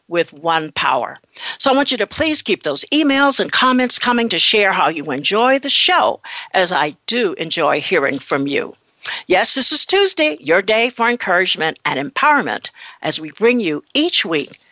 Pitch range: 170-270 Hz